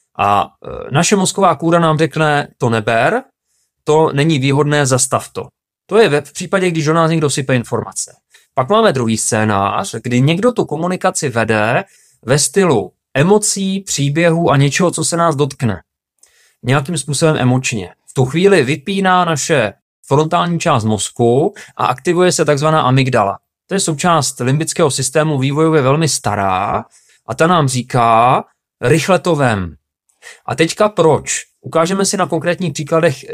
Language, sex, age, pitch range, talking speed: Czech, male, 30-49, 125-165 Hz, 145 wpm